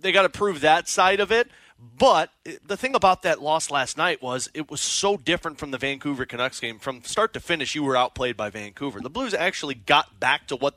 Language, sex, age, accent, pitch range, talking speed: English, male, 30-49, American, 135-175 Hz, 235 wpm